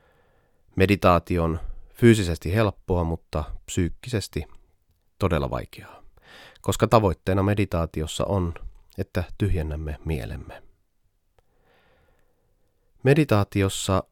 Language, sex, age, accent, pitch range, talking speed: Finnish, male, 30-49, native, 80-100 Hz, 70 wpm